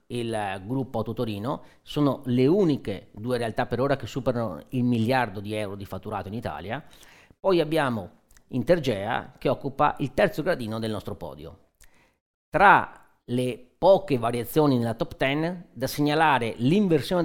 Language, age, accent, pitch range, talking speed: Italian, 40-59, native, 110-150 Hz, 145 wpm